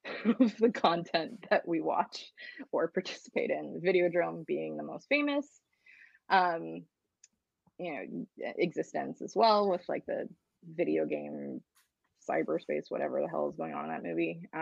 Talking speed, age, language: 145 wpm, 20-39, English